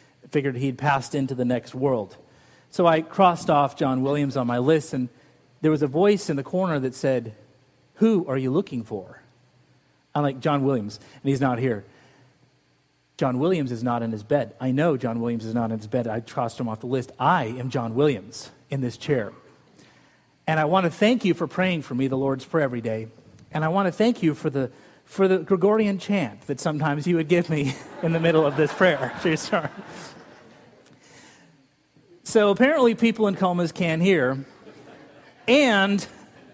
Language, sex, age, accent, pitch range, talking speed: English, male, 40-59, American, 135-195 Hz, 195 wpm